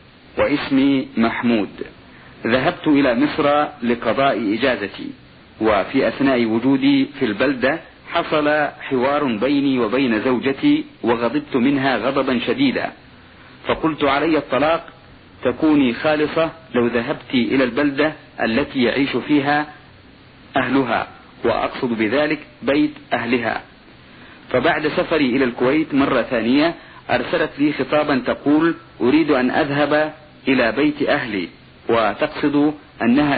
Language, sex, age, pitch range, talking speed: Arabic, male, 50-69, 130-165 Hz, 100 wpm